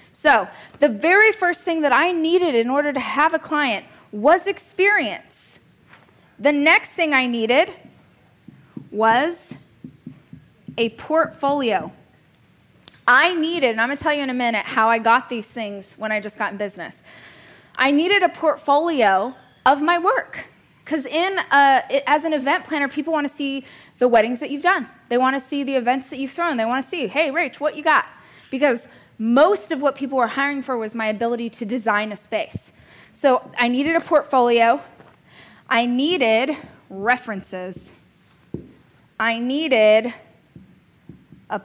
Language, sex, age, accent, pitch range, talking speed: English, female, 20-39, American, 225-300 Hz, 160 wpm